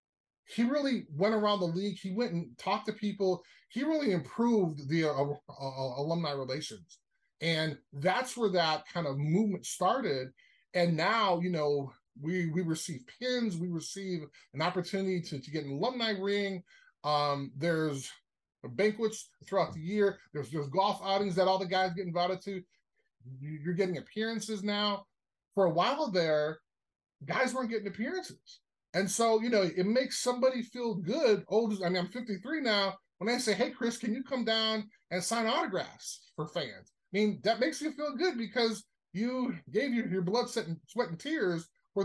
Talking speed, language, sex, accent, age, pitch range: 175 wpm, English, male, American, 20-39, 165-225 Hz